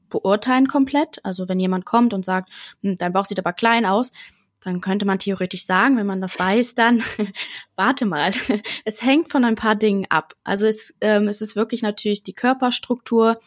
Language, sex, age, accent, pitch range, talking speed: German, female, 20-39, German, 185-230 Hz, 185 wpm